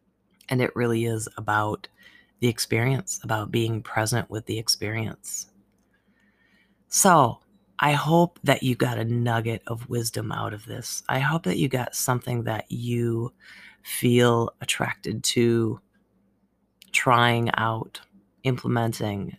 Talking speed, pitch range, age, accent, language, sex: 125 wpm, 115-140 Hz, 30-49, American, English, female